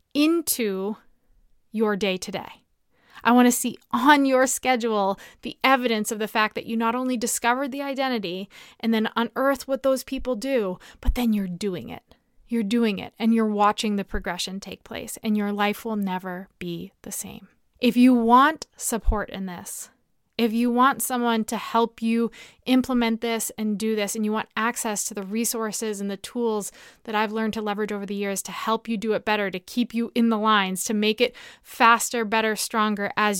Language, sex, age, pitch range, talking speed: English, female, 20-39, 200-235 Hz, 195 wpm